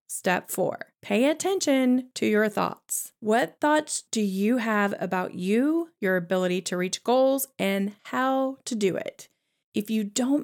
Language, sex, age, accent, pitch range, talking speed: English, female, 30-49, American, 190-245 Hz, 155 wpm